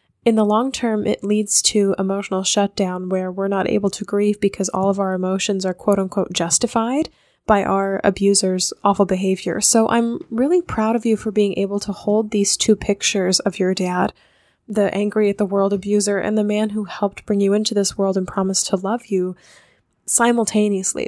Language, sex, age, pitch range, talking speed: English, female, 10-29, 195-225 Hz, 195 wpm